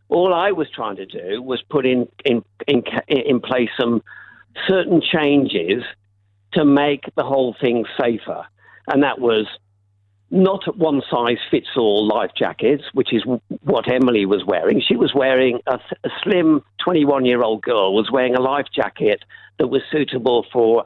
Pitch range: 110-150 Hz